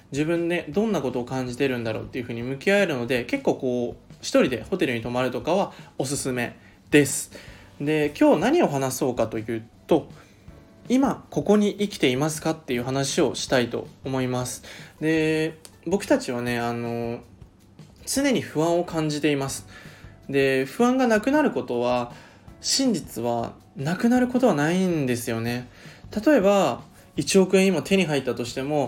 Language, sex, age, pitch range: Japanese, male, 20-39, 125-185 Hz